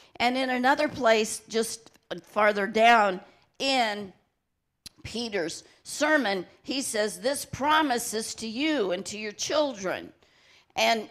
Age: 50-69